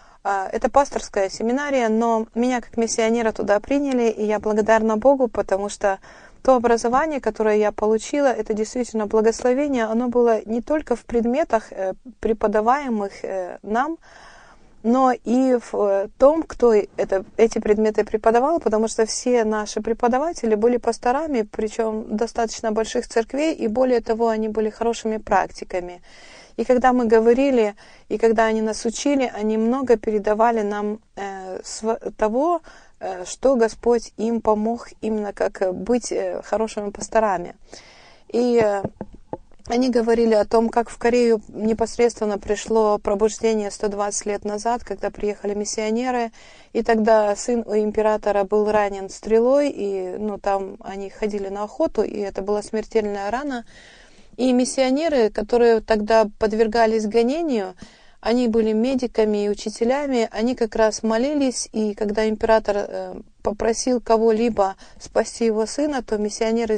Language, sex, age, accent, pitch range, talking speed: Russian, female, 30-49, native, 215-240 Hz, 130 wpm